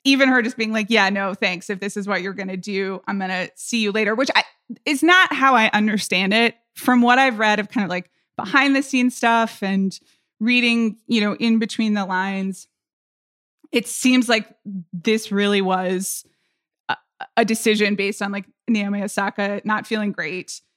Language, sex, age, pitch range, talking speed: English, female, 20-39, 195-230 Hz, 195 wpm